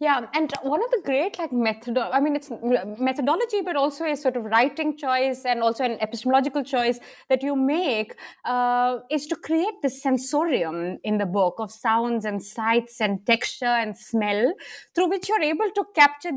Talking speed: 185 wpm